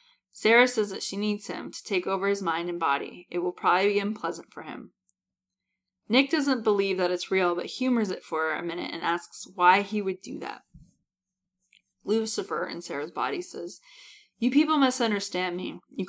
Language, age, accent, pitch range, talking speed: English, 20-39, American, 175-220 Hz, 185 wpm